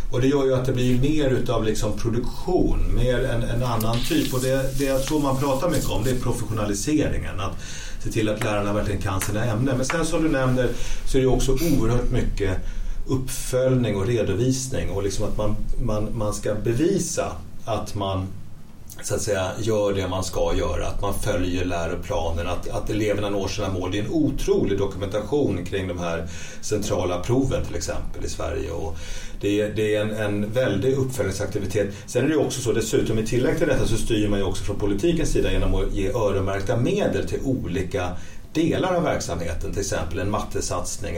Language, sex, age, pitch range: Swedish, male, 40-59, 100-130 Hz